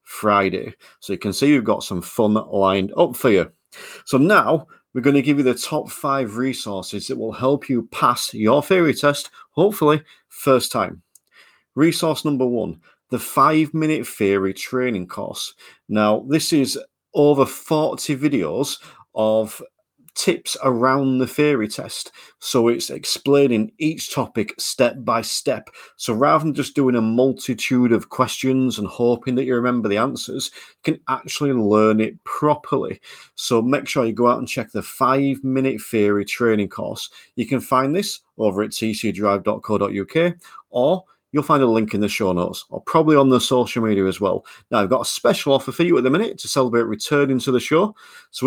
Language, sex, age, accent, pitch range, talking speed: English, male, 40-59, British, 110-145 Hz, 175 wpm